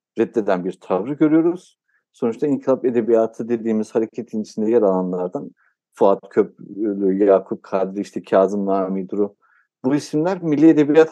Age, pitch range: 60-79, 105-150 Hz